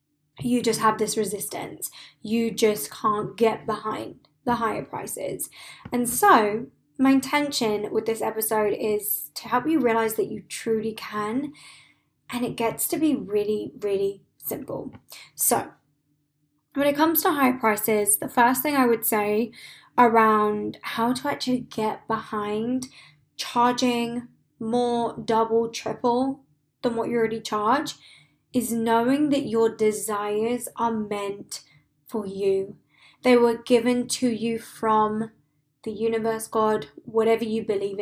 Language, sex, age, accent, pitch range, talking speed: English, female, 20-39, British, 215-250 Hz, 135 wpm